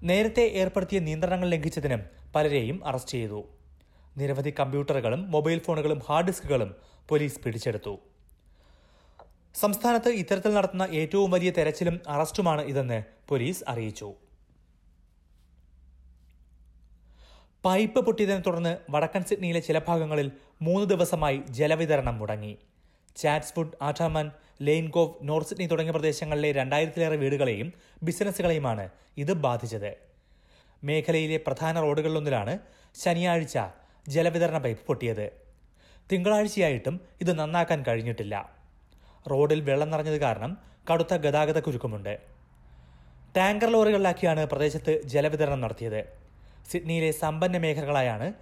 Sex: male